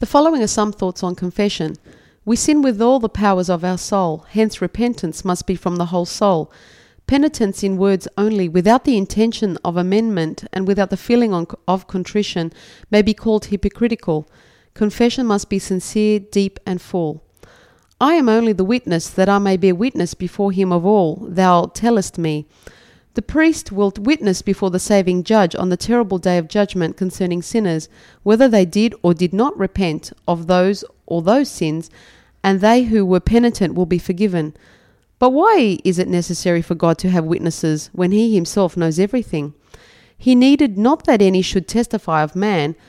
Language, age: English, 40-59